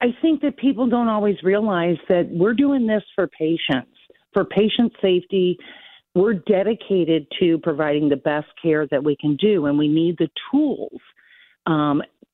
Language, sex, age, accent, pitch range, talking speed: English, female, 50-69, American, 150-190 Hz, 160 wpm